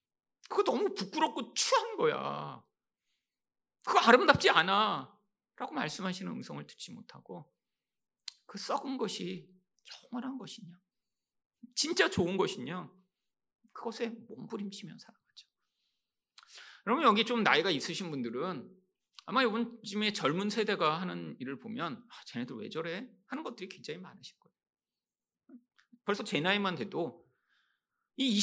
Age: 40-59